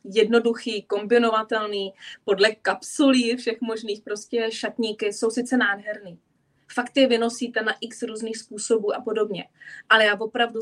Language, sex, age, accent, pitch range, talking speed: Czech, female, 20-39, native, 195-225 Hz, 130 wpm